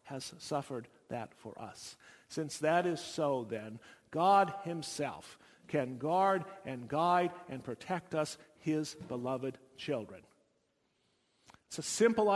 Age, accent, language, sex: 50-69, American, English, male